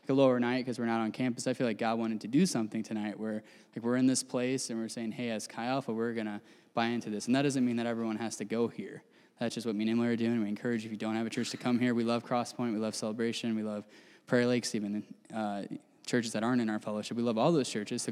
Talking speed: 300 wpm